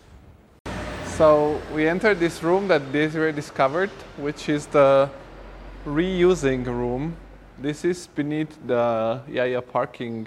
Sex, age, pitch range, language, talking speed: male, 20-39, 115-140 Hz, English, 110 wpm